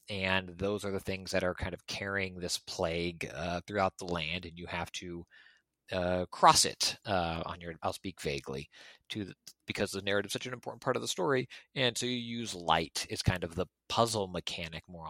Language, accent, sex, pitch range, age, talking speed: English, American, male, 85-105 Hz, 30-49, 215 wpm